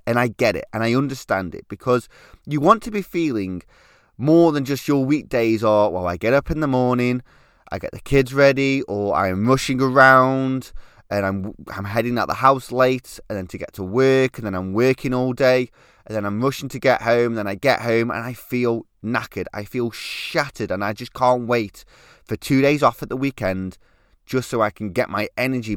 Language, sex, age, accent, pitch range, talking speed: English, male, 20-39, British, 110-140 Hz, 215 wpm